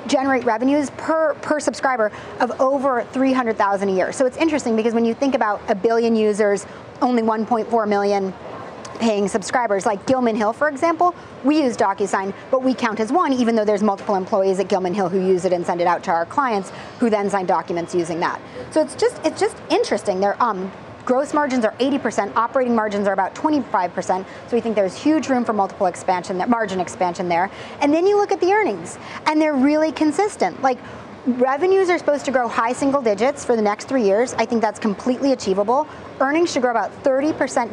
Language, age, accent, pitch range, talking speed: English, 30-49, American, 210-285 Hz, 205 wpm